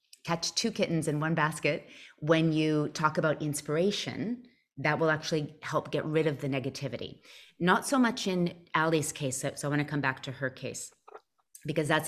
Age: 30-49